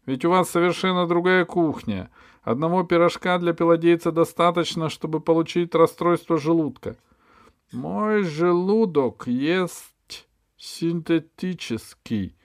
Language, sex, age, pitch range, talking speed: Russian, male, 50-69, 120-175 Hz, 95 wpm